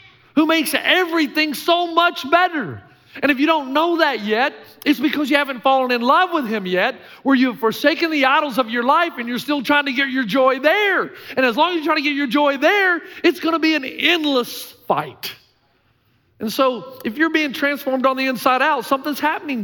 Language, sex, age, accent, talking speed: English, male, 50-69, American, 215 wpm